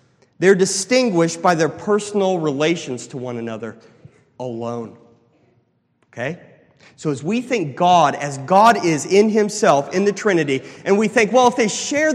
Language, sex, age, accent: English, male, 30-49, American